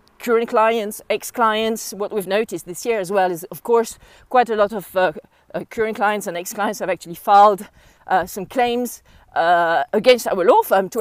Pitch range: 185-230 Hz